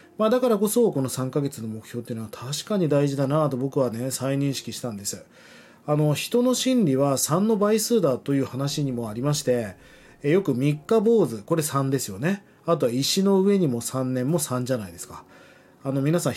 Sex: male